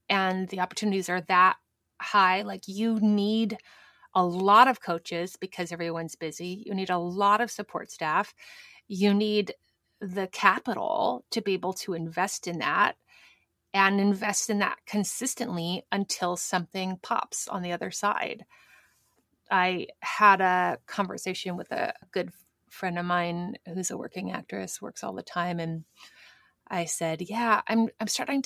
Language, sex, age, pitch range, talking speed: English, female, 30-49, 180-235 Hz, 150 wpm